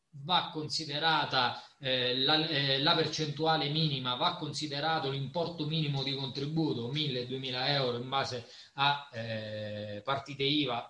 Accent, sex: native, male